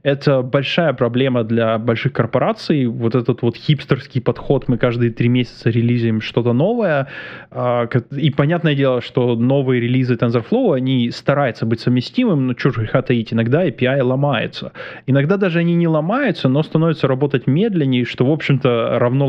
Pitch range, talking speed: 120-140 Hz, 155 wpm